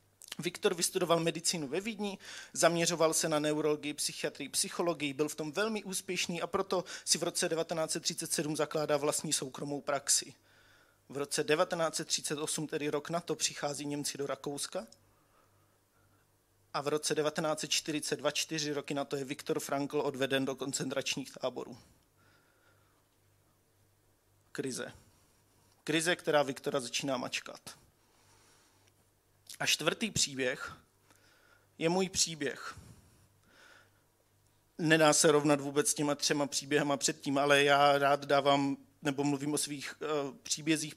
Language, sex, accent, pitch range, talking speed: Czech, male, native, 135-160 Hz, 120 wpm